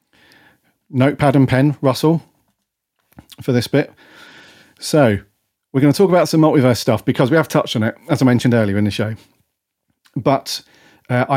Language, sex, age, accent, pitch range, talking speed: English, male, 40-59, British, 110-135 Hz, 165 wpm